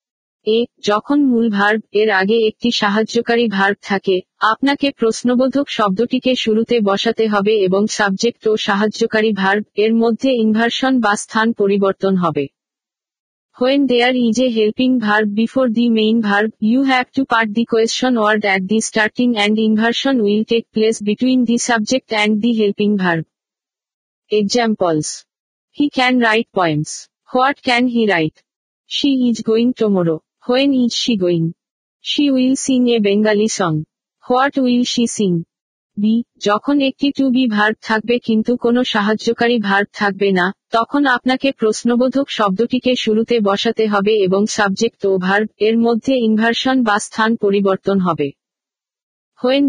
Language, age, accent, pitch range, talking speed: Bengali, 50-69, native, 210-245 Hz, 95 wpm